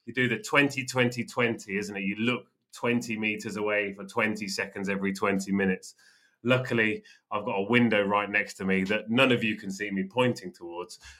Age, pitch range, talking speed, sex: 30-49, 105-130 Hz, 190 wpm, male